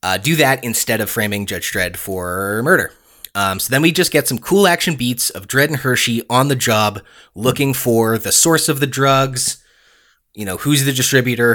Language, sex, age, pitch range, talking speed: English, male, 20-39, 105-130 Hz, 205 wpm